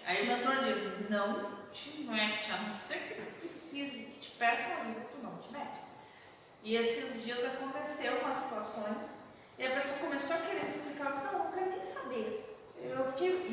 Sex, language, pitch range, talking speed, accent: female, Portuguese, 245-370 Hz, 205 wpm, Brazilian